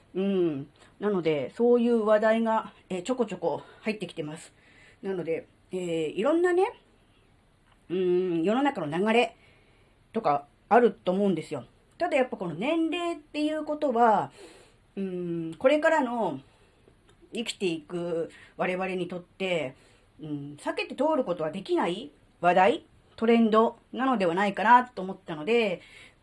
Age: 40-59